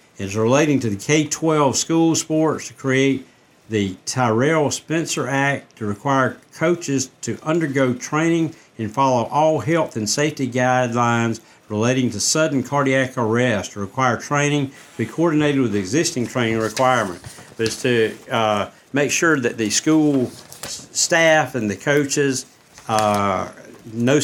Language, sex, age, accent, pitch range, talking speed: English, male, 60-79, American, 110-145 Hz, 140 wpm